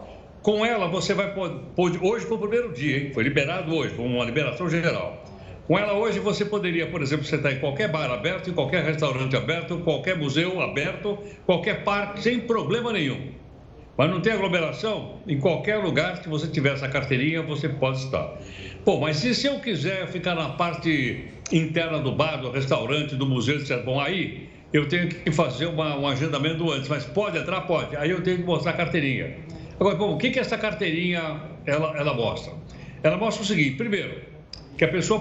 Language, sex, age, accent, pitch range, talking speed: Portuguese, male, 60-79, Brazilian, 150-195 Hz, 190 wpm